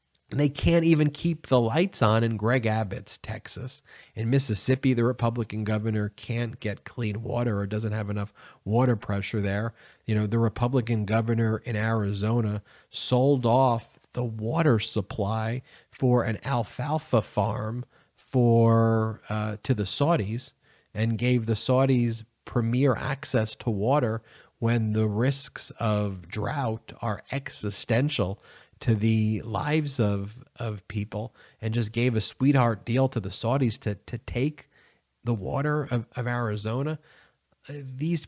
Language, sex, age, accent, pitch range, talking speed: English, male, 40-59, American, 110-130 Hz, 140 wpm